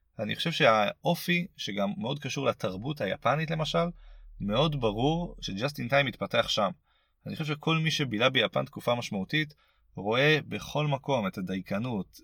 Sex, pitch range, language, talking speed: male, 115-170 Hz, Hebrew, 140 wpm